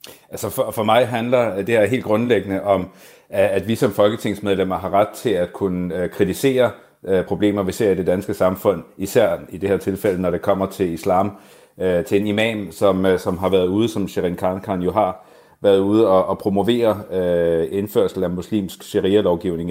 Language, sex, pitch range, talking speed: Danish, male, 95-105 Hz, 170 wpm